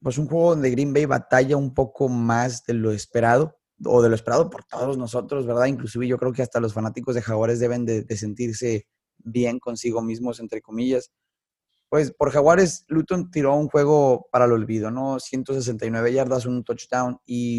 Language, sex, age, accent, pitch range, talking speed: Spanish, male, 30-49, Mexican, 115-135 Hz, 190 wpm